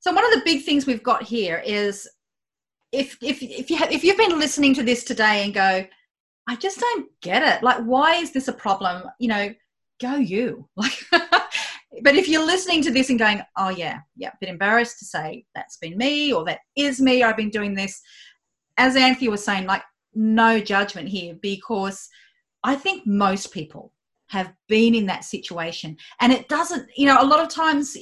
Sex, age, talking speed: female, 30-49, 200 wpm